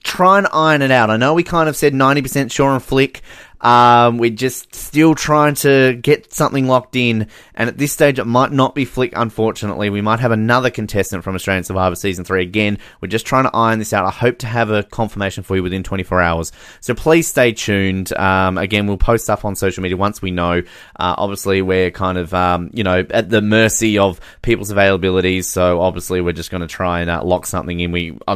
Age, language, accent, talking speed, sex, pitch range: 20-39, English, Australian, 225 wpm, male, 90-120 Hz